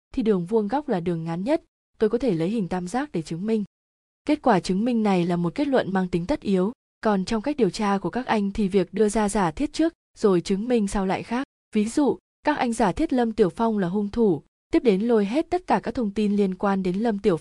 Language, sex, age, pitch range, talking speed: Vietnamese, female, 20-39, 190-235 Hz, 270 wpm